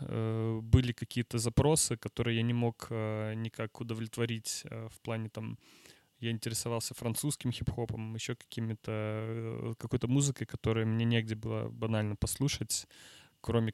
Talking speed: 120 wpm